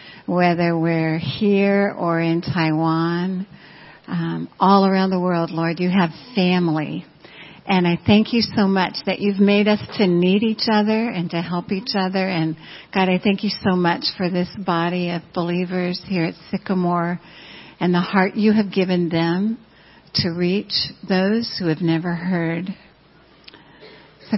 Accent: American